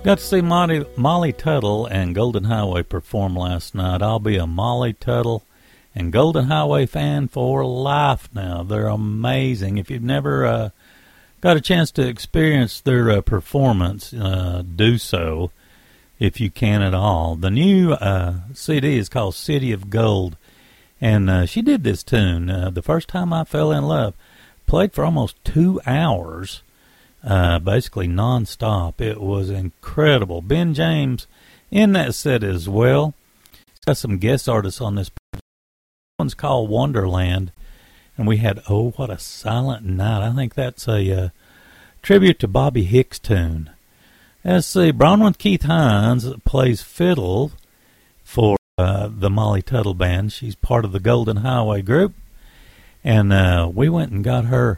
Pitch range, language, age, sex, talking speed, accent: 95-135 Hz, English, 50-69, male, 155 wpm, American